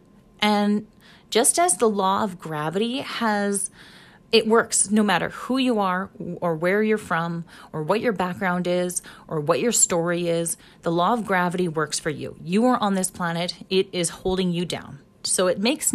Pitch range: 175-215 Hz